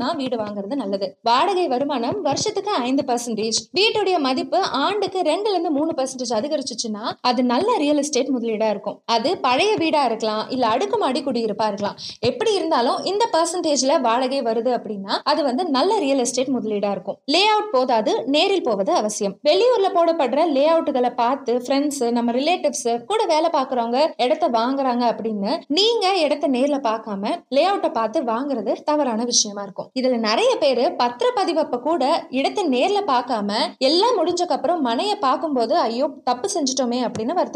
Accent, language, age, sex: native, Tamil, 20-39, female